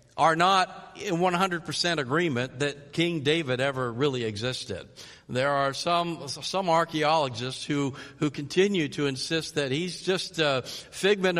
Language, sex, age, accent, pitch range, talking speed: English, male, 50-69, American, 135-180 Hz, 135 wpm